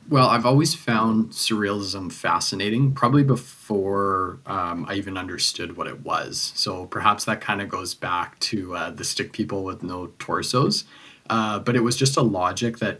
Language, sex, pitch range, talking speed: English, male, 95-120 Hz, 175 wpm